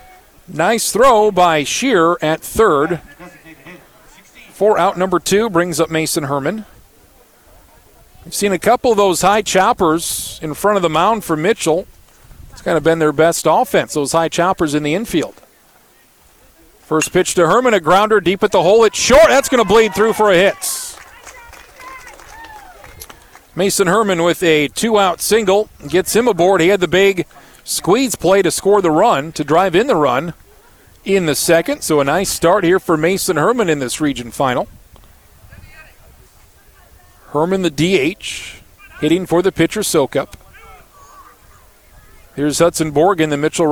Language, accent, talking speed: English, American, 155 wpm